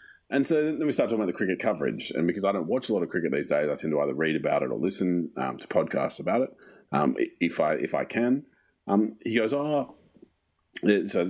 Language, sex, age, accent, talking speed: English, male, 30-49, Australian, 250 wpm